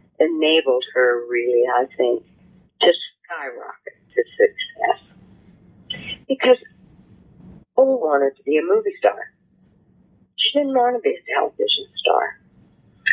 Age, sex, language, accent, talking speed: 50-69, female, English, American, 115 wpm